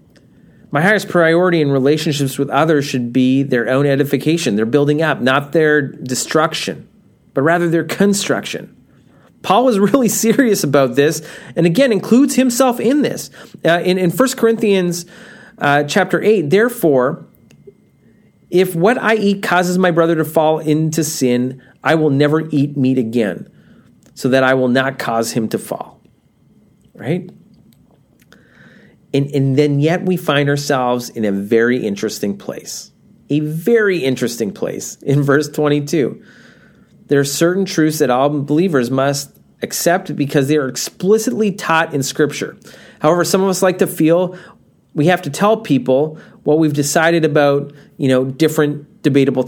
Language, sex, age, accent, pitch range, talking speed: English, male, 30-49, American, 140-185 Hz, 150 wpm